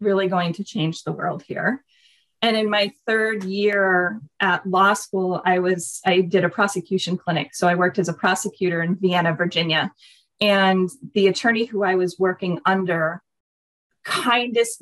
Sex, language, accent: female, English, American